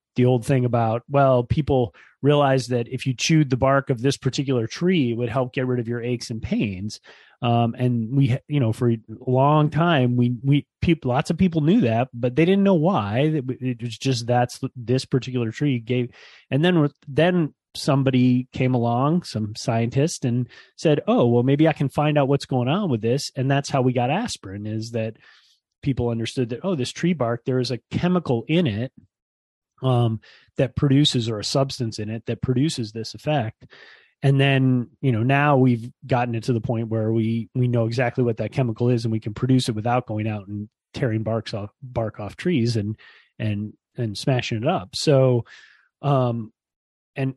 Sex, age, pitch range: male, 30-49, 115-140 Hz